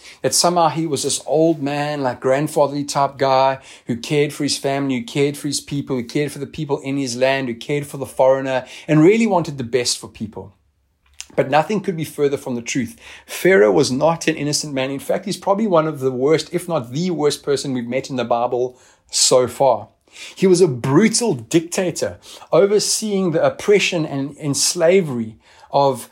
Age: 30-49